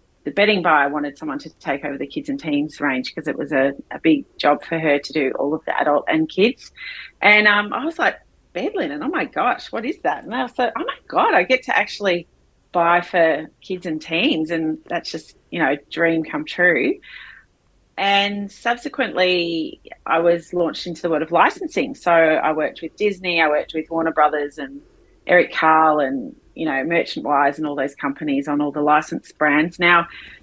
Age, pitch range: 30-49, 155-205 Hz